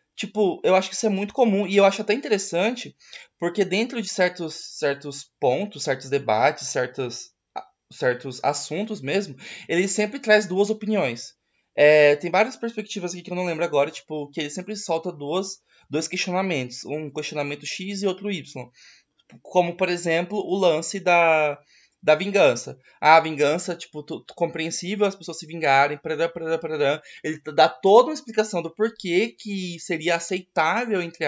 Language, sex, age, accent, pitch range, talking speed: Portuguese, male, 20-39, Brazilian, 150-200 Hz, 160 wpm